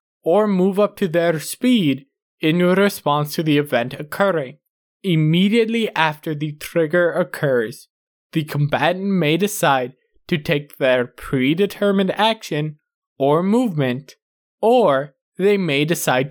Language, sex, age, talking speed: English, male, 20-39, 120 wpm